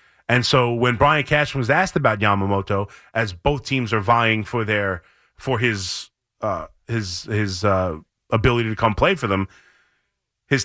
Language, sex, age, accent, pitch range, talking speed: English, male, 30-49, American, 115-175 Hz, 165 wpm